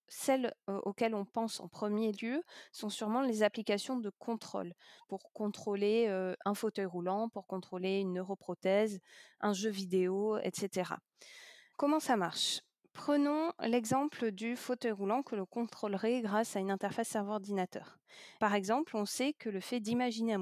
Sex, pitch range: female, 195-245 Hz